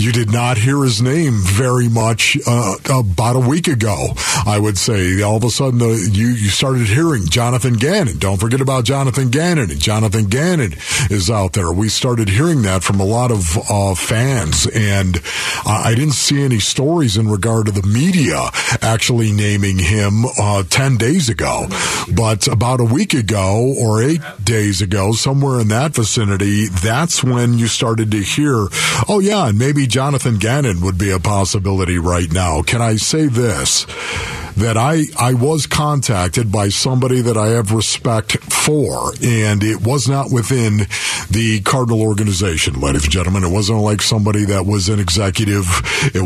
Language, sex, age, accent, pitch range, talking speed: English, male, 50-69, American, 105-125 Hz, 175 wpm